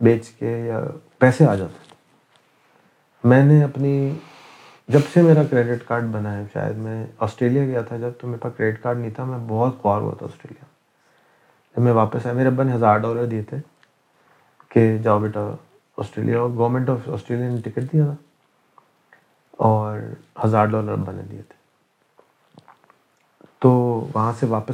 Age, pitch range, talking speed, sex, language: 30-49, 110-130 Hz, 130 wpm, male, English